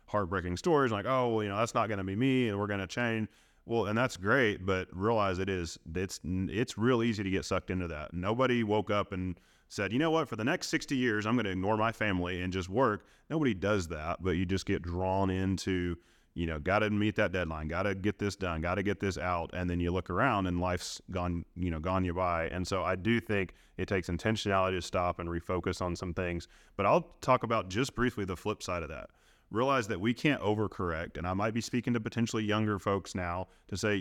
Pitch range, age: 90-110 Hz, 30-49